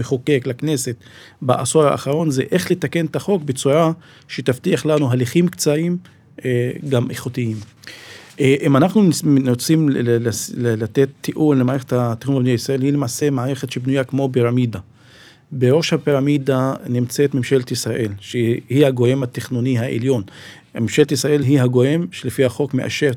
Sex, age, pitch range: male, 40-59, 125-150 Hz